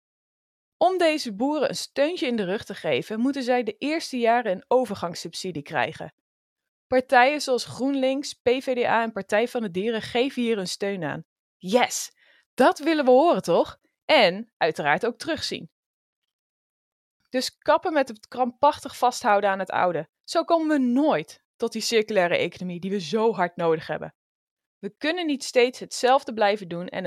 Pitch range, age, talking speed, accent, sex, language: 190-275 Hz, 20-39, 160 wpm, Dutch, female, Dutch